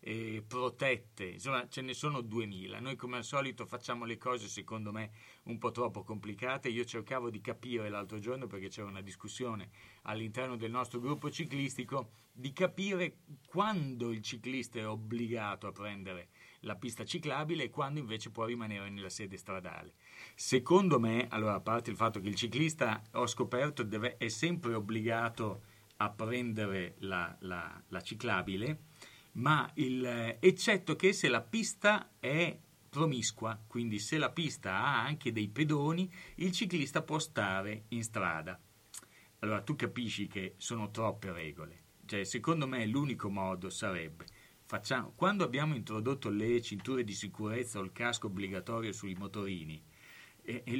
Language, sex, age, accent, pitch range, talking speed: Italian, male, 30-49, native, 105-135 Hz, 150 wpm